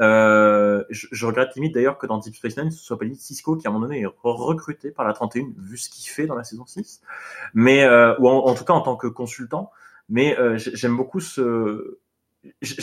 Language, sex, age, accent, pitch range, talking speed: French, male, 20-39, French, 120-160 Hz, 230 wpm